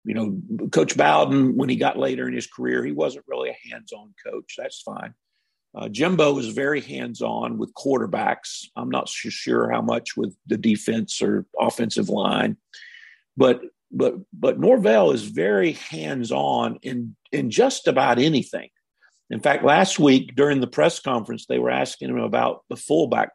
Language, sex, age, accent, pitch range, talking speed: English, male, 50-69, American, 130-210 Hz, 165 wpm